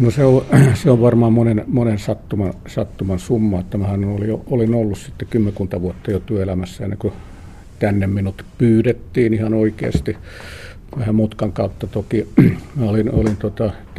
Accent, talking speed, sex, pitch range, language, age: native, 150 wpm, male, 95-115 Hz, Finnish, 50-69